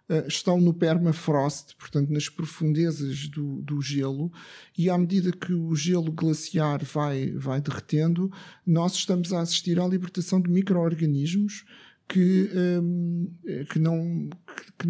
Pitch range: 155-180 Hz